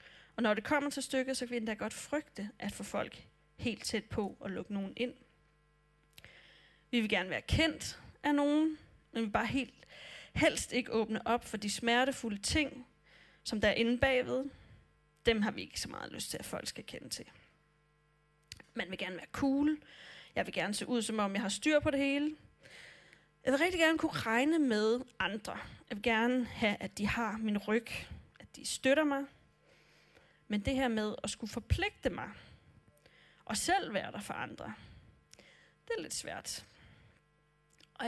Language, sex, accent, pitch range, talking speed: Danish, female, native, 205-275 Hz, 185 wpm